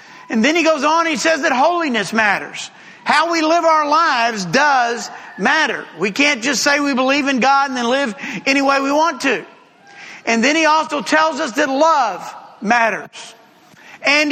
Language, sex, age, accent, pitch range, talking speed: English, male, 50-69, American, 240-305 Hz, 180 wpm